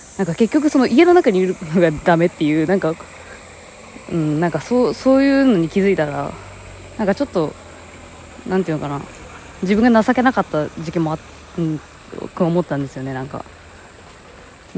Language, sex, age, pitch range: Japanese, female, 20-39, 130-205 Hz